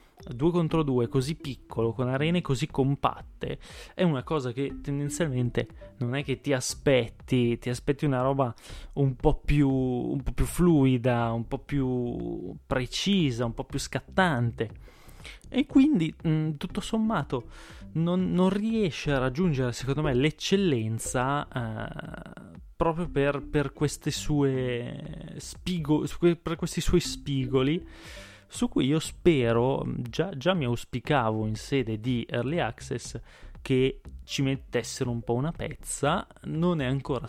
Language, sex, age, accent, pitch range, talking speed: Italian, male, 20-39, native, 120-160 Hz, 135 wpm